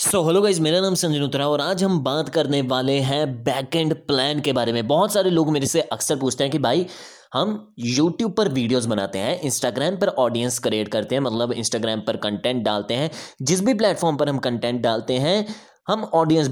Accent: native